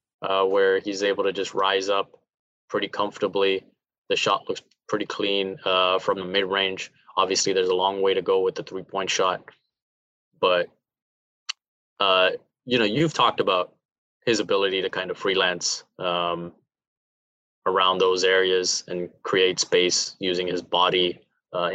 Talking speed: 150 wpm